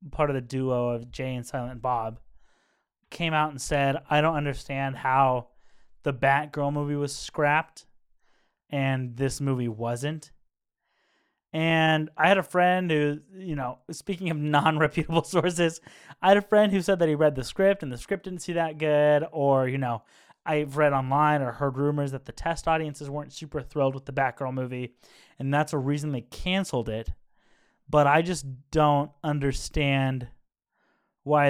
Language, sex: English, male